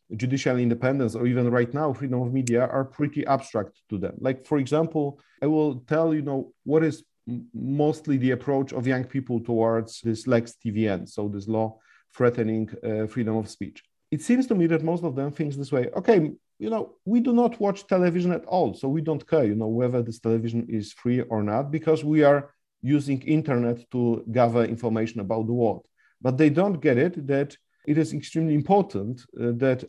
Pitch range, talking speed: 120-150 Hz, 200 wpm